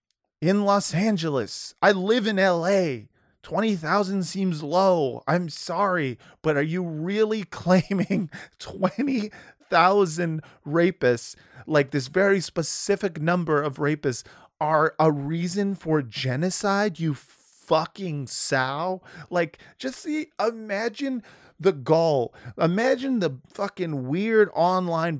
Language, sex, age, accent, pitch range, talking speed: English, male, 30-49, American, 120-180 Hz, 105 wpm